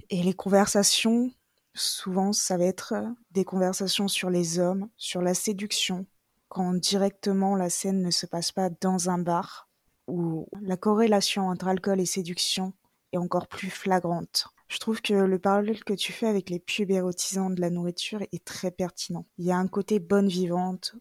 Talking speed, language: 170 wpm, French